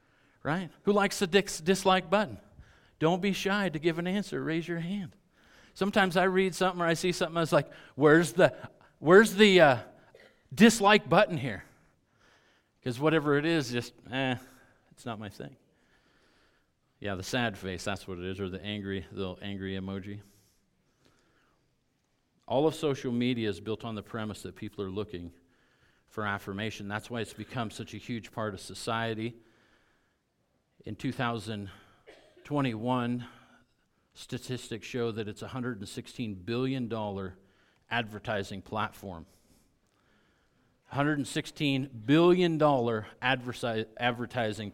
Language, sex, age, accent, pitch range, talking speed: English, male, 50-69, American, 105-140 Hz, 130 wpm